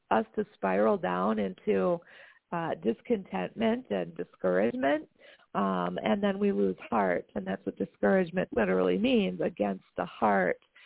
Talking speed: 135 wpm